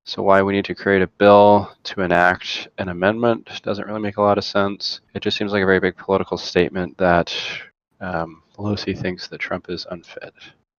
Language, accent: English, American